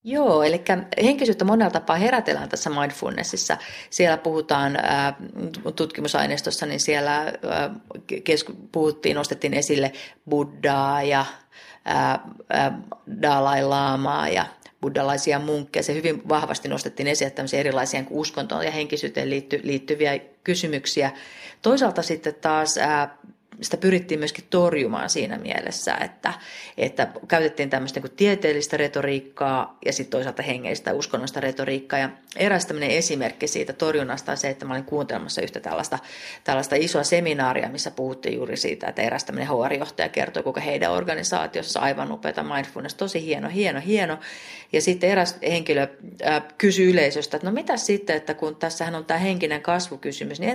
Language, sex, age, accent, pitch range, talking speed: Finnish, female, 30-49, native, 145-205 Hz, 135 wpm